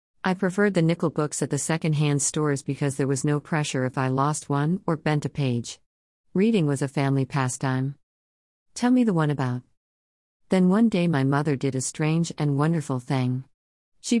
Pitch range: 130-185 Hz